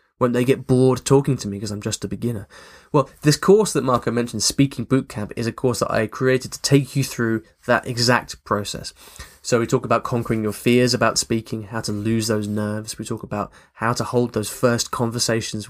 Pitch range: 110-135 Hz